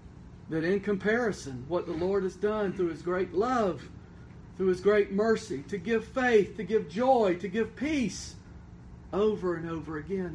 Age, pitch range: 50-69, 150-210 Hz